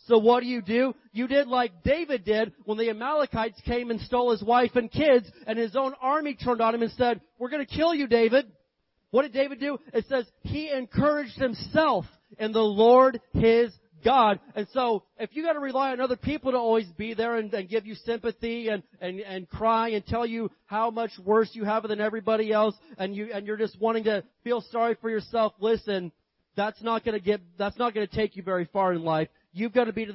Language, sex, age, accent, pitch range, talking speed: English, male, 30-49, American, 200-240 Hz, 230 wpm